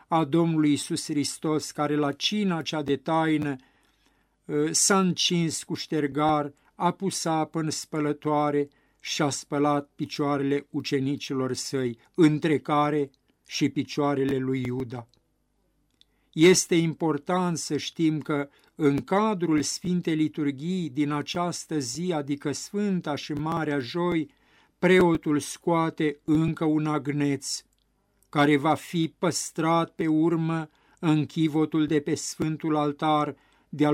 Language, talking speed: Romanian, 115 wpm